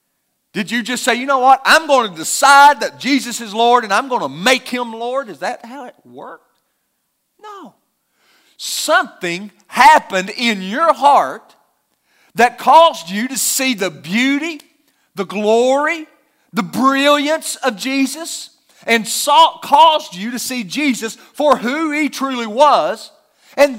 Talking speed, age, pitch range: 145 wpm, 40-59, 220-295 Hz